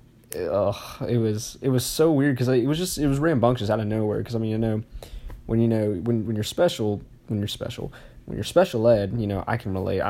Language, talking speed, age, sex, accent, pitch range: English, 250 wpm, 20-39, male, American, 105-125 Hz